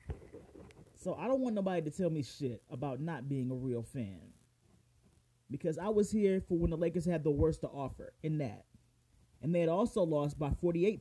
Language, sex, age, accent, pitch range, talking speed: English, male, 30-49, American, 125-170 Hz, 200 wpm